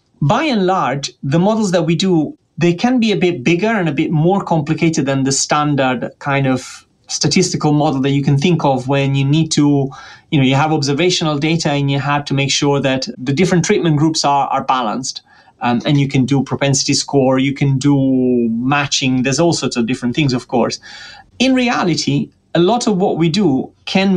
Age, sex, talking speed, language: 30-49, male, 205 wpm, English